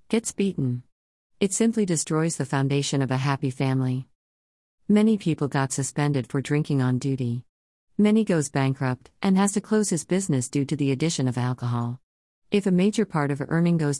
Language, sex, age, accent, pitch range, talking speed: English, female, 50-69, American, 130-175 Hz, 175 wpm